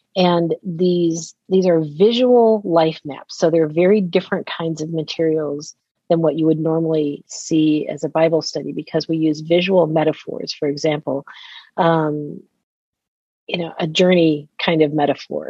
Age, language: 40-59, English